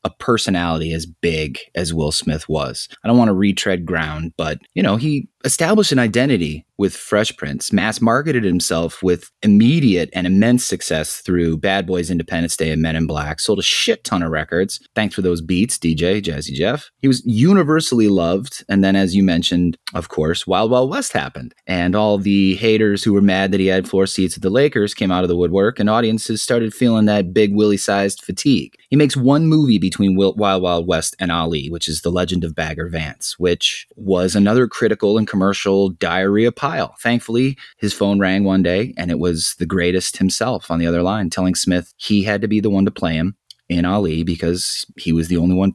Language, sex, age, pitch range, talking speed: English, male, 30-49, 85-110 Hz, 210 wpm